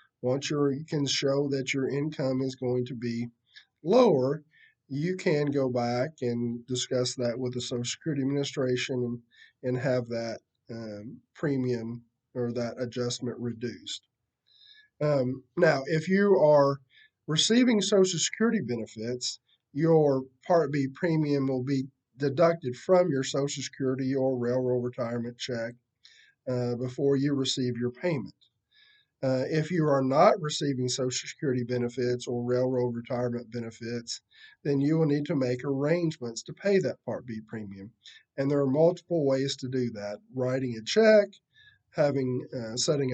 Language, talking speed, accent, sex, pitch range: English, 145 wpm, American, male, 125-150 Hz